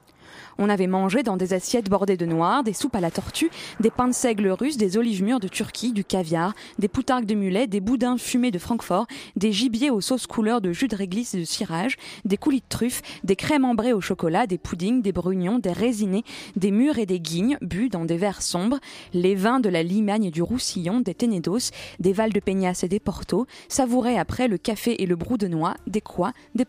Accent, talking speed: French, 225 wpm